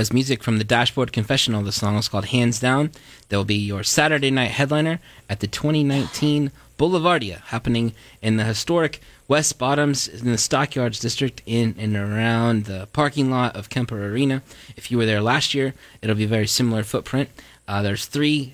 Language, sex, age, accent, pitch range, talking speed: English, male, 20-39, American, 105-130 Hz, 180 wpm